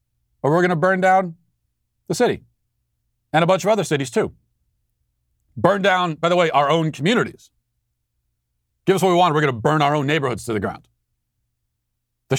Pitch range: 105-150 Hz